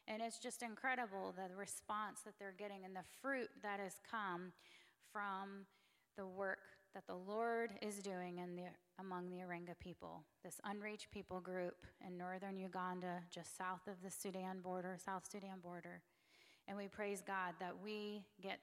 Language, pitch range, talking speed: English, 185-220 Hz, 170 wpm